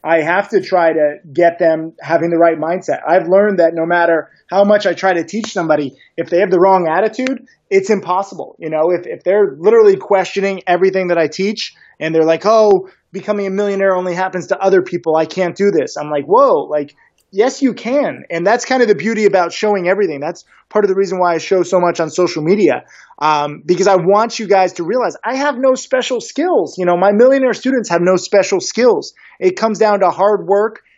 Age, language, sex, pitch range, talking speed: 20-39, English, male, 170-220 Hz, 225 wpm